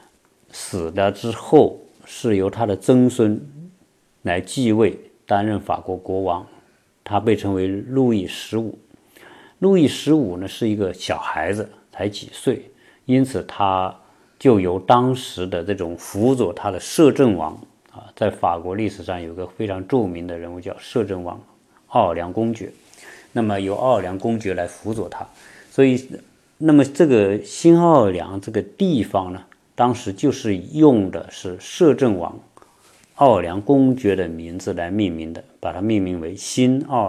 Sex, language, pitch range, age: male, Chinese, 95-125 Hz, 50-69